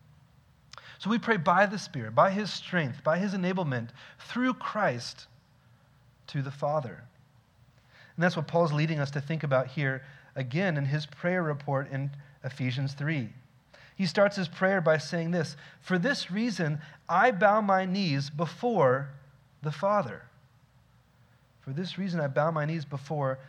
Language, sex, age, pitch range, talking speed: English, male, 30-49, 135-165 Hz, 155 wpm